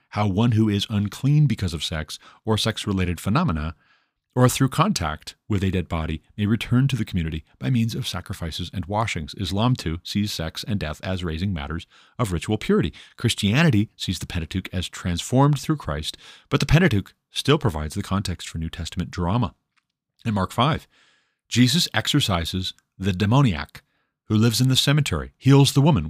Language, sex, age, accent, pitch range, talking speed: English, male, 40-59, American, 90-125 Hz, 170 wpm